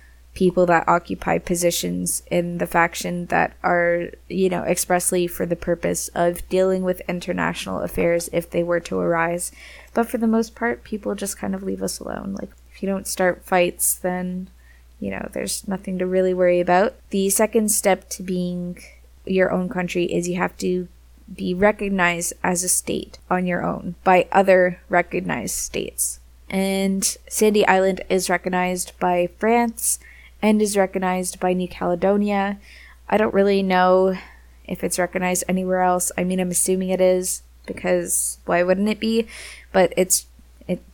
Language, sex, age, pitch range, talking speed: English, female, 20-39, 175-195 Hz, 165 wpm